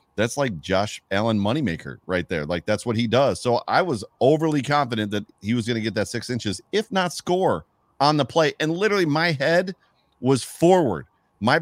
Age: 40-59